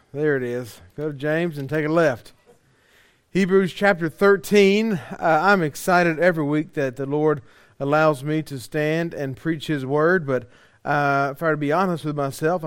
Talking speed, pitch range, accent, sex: 185 wpm, 150-185 Hz, American, male